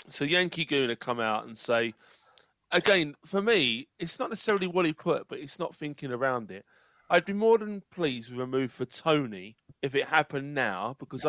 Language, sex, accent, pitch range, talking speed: English, male, British, 130-180 Hz, 195 wpm